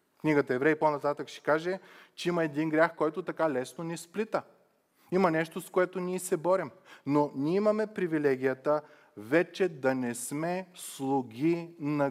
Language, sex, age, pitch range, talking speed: Bulgarian, male, 30-49, 130-165 Hz, 160 wpm